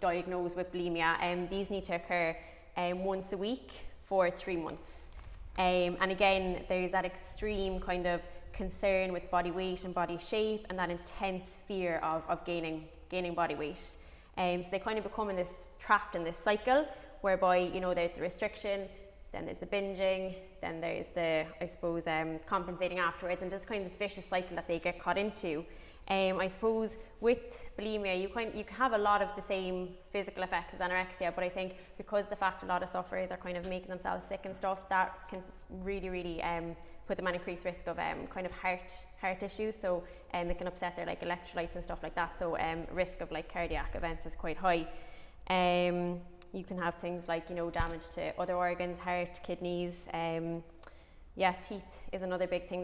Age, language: 20-39, English